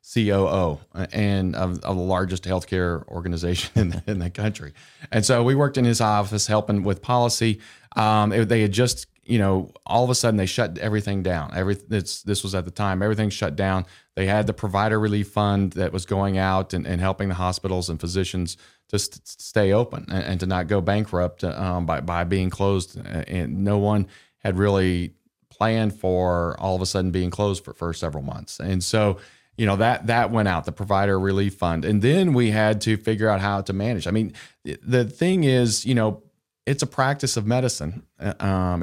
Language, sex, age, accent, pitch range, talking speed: English, male, 30-49, American, 95-115 Hz, 200 wpm